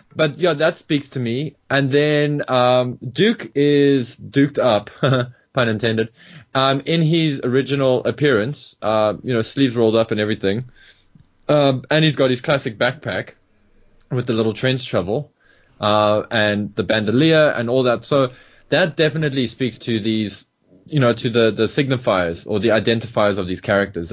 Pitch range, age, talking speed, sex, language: 110-135 Hz, 20-39, 160 wpm, male, English